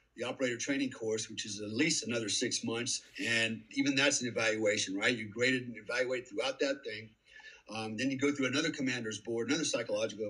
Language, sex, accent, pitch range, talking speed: English, male, American, 120-150 Hz, 205 wpm